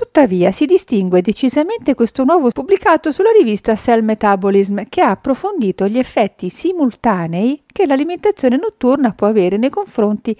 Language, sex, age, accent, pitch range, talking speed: Italian, female, 50-69, native, 185-280 Hz, 140 wpm